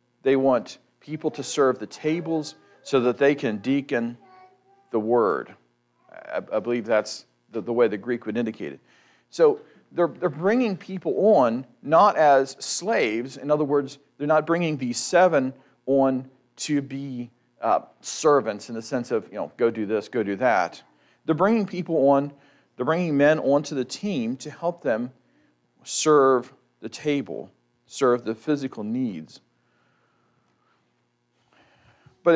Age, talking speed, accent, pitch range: 40-59, 145 wpm, American, 120-160 Hz